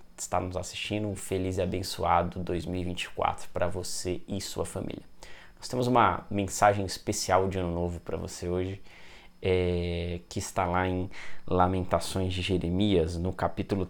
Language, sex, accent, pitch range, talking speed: Portuguese, male, Brazilian, 90-100 Hz, 145 wpm